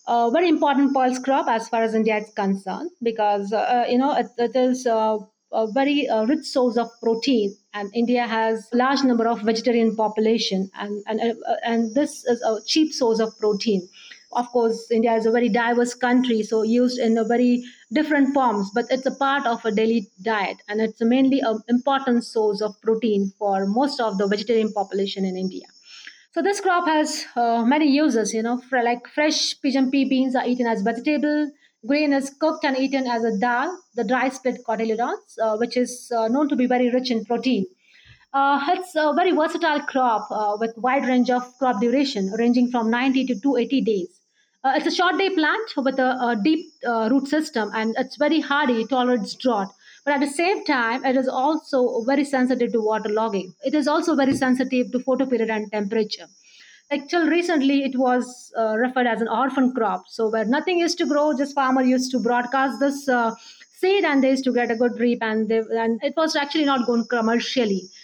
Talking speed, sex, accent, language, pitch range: 205 wpm, female, Indian, English, 225-275 Hz